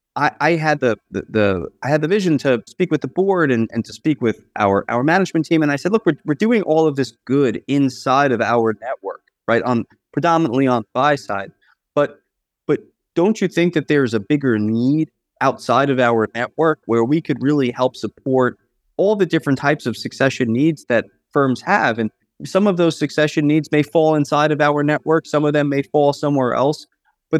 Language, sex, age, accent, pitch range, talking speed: English, male, 30-49, American, 130-160 Hz, 210 wpm